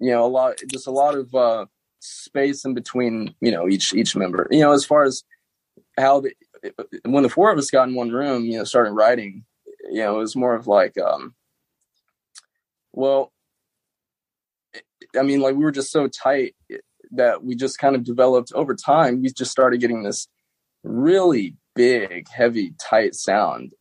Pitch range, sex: 120-175 Hz, male